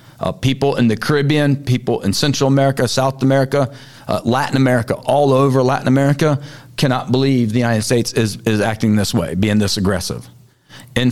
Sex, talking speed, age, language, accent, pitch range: male, 175 wpm, 40-59, English, American, 115-135 Hz